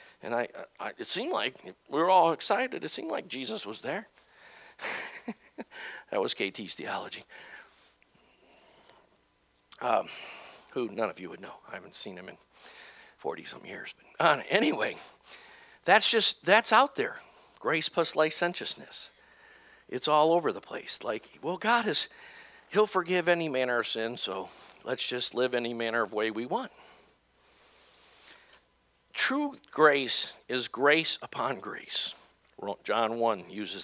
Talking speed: 140 wpm